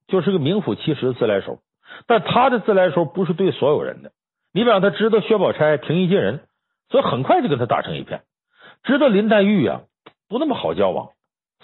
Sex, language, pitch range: male, Chinese, 150-220 Hz